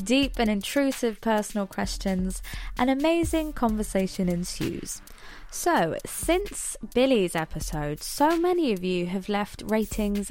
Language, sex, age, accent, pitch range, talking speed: English, female, 20-39, British, 175-220 Hz, 115 wpm